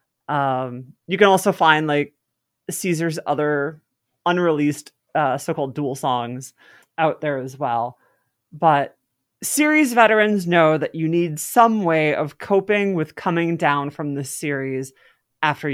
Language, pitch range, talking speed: English, 145-195 Hz, 135 wpm